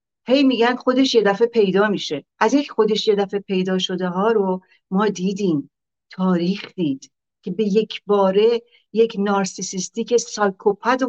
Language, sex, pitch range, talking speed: Persian, female, 190-225 Hz, 150 wpm